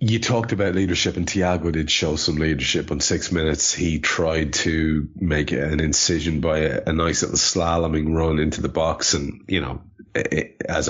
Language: English